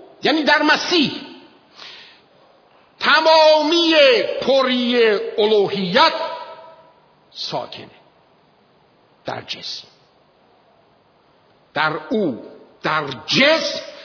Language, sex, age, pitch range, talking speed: Persian, male, 50-69, 205-295 Hz, 55 wpm